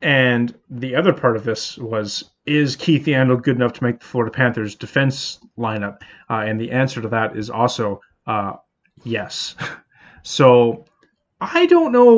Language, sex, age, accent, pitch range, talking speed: English, male, 20-39, American, 110-130 Hz, 165 wpm